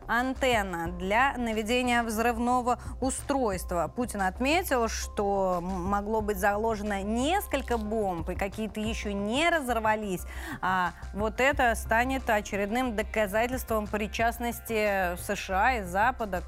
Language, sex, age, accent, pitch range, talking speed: Russian, female, 20-39, native, 205-270 Hz, 100 wpm